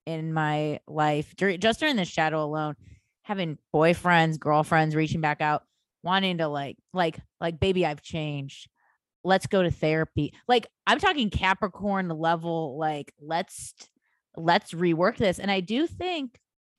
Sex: female